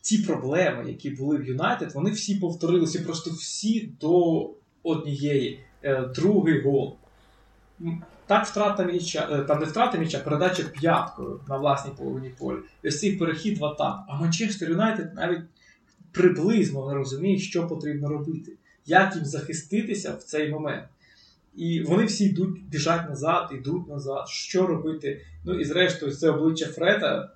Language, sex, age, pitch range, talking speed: Russian, male, 20-39, 140-185 Hz, 145 wpm